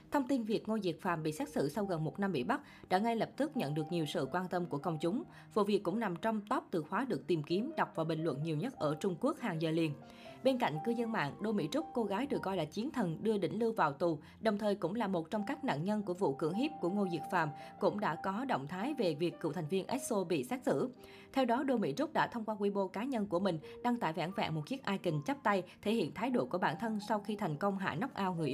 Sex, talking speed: female, 290 wpm